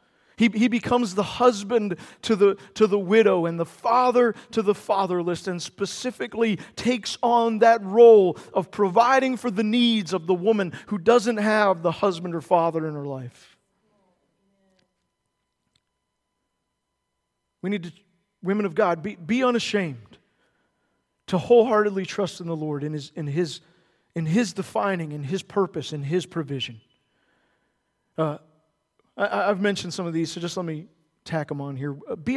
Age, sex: 40-59, male